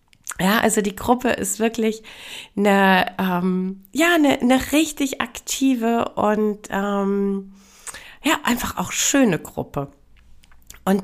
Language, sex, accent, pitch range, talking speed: German, female, German, 185-245 Hz, 115 wpm